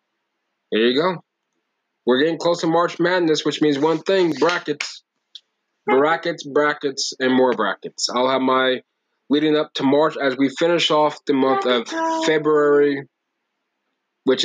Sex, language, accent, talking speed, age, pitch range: male, English, American, 145 wpm, 20-39, 120-150 Hz